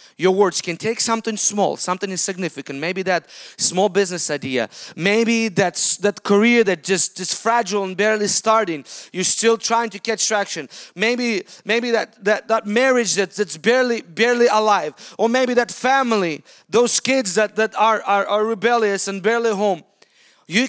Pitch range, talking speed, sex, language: 195-235 Hz, 165 wpm, male, English